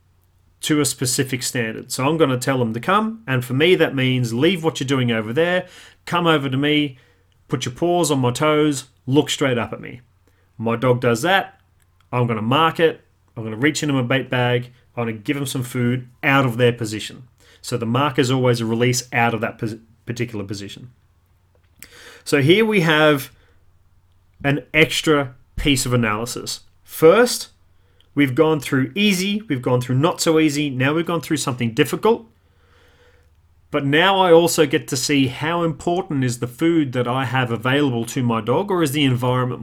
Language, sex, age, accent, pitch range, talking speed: English, male, 30-49, Australian, 115-150 Hz, 190 wpm